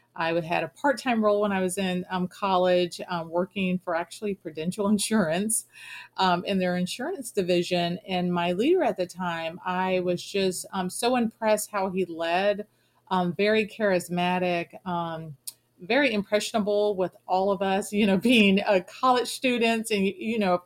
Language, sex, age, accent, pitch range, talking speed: English, female, 40-59, American, 175-210 Hz, 170 wpm